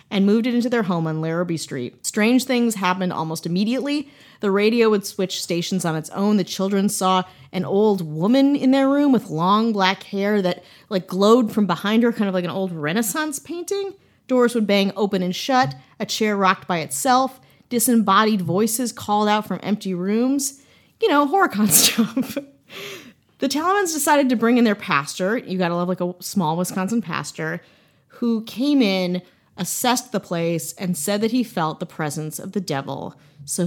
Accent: American